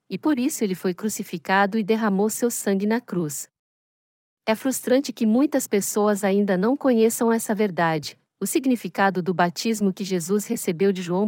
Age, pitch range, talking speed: 50-69, 185-245 Hz, 165 wpm